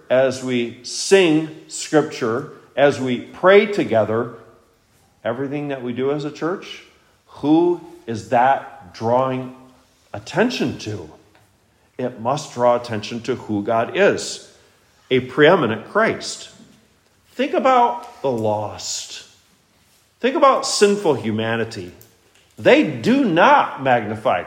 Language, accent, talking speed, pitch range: English, American, 110 wpm, 110-160 Hz